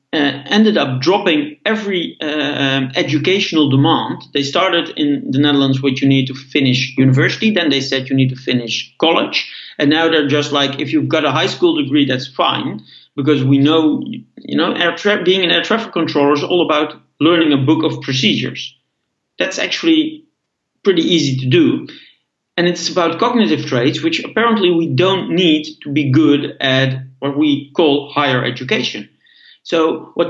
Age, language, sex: 50-69, English, male